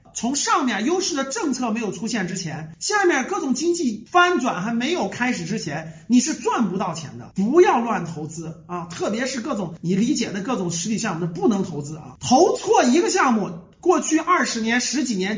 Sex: male